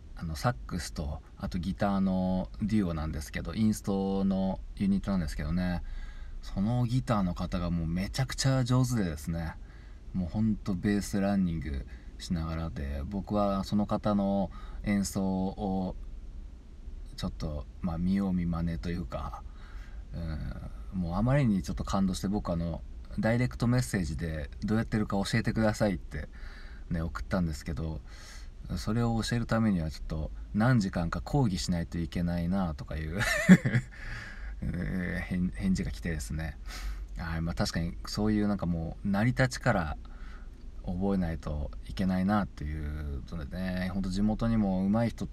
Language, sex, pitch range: Japanese, male, 80-100 Hz